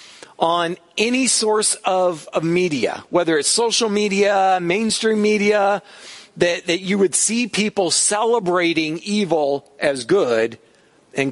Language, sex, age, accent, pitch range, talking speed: English, male, 50-69, American, 145-205 Hz, 120 wpm